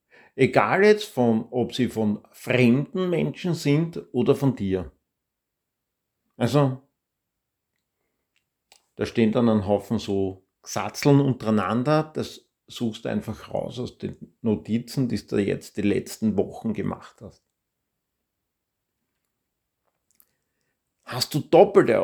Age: 50-69